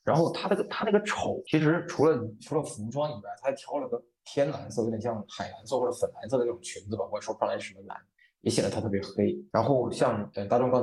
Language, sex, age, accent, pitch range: Chinese, male, 20-39, native, 115-180 Hz